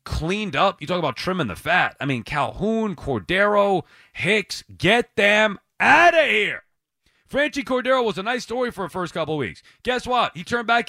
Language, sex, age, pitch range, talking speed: English, male, 40-59, 135-205 Hz, 195 wpm